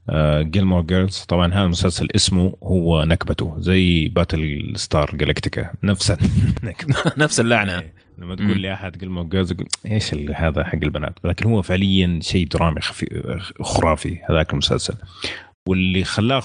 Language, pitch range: Arabic, 80-100 Hz